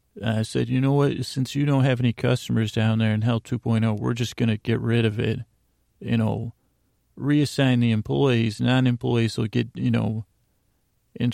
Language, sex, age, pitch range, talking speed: English, male, 40-59, 110-125 Hz, 185 wpm